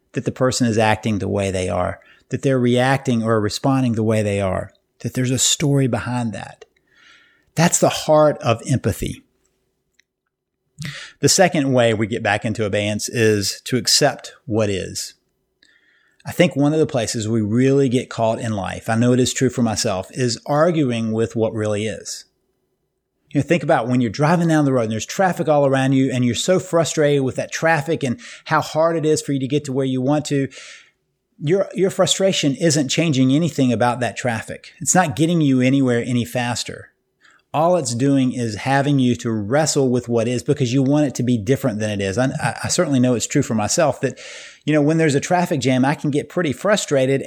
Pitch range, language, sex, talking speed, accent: 115-150 Hz, English, male, 205 wpm, American